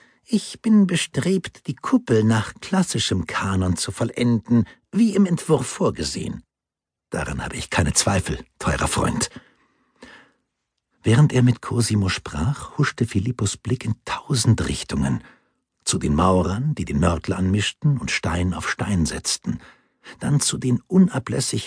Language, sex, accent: German, male, German